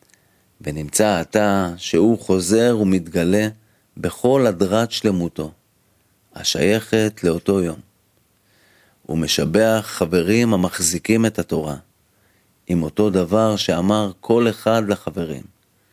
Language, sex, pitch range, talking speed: Hebrew, male, 85-110 Hz, 90 wpm